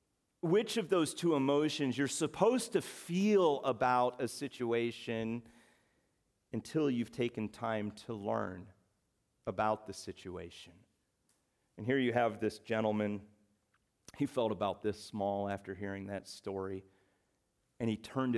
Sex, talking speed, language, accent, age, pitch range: male, 125 wpm, English, American, 40-59, 105-140 Hz